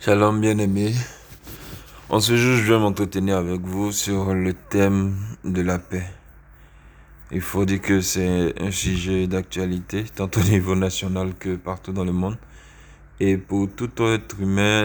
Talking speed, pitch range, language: 155 wpm, 90-105 Hz, French